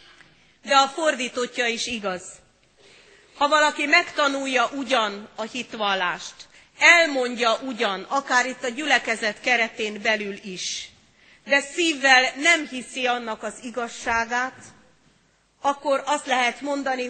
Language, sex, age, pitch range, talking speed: Hungarian, female, 40-59, 220-270 Hz, 110 wpm